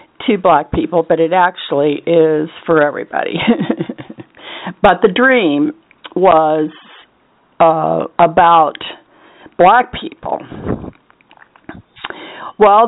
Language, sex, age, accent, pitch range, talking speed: English, female, 50-69, American, 175-255 Hz, 85 wpm